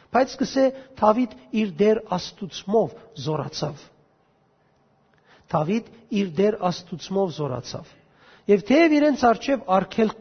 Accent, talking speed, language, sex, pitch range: Turkish, 110 wpm, English, male, 195-250 Hz